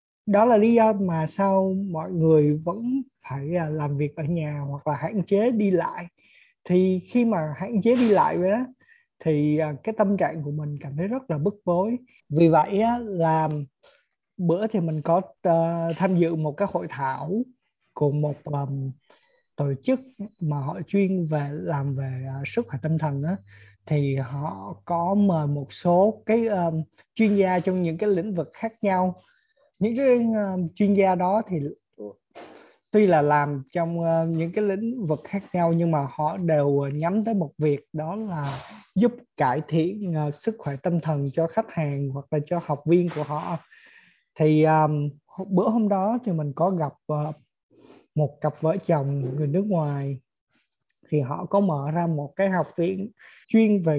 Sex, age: male, 20-39